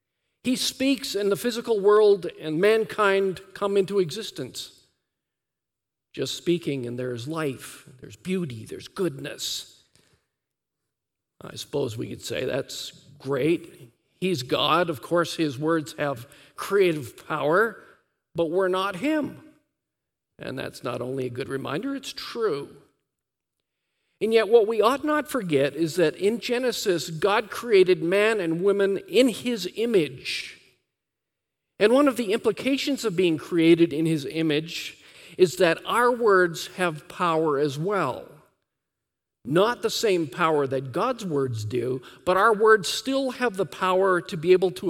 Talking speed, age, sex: 145 wpm, 50-69, male